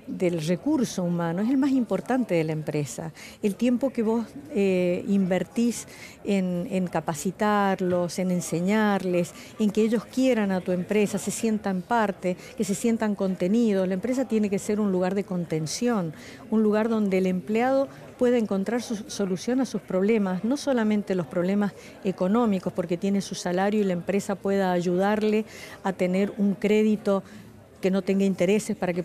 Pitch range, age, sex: 185-220 Hz, 50-69, female